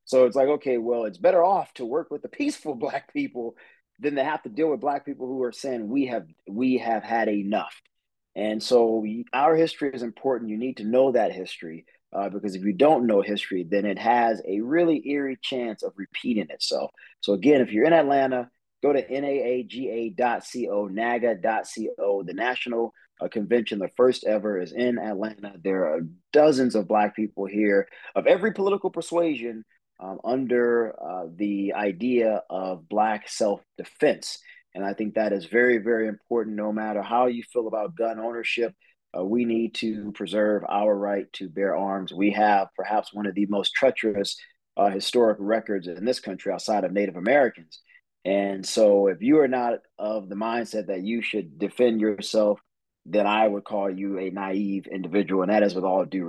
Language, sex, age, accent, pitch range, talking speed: English, male, 30-49, American, 100-125 Hz, 185 wpm